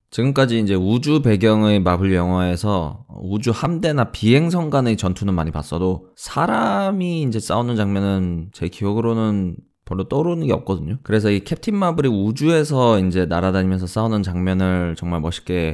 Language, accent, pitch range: Korean, native, 90-135 Hz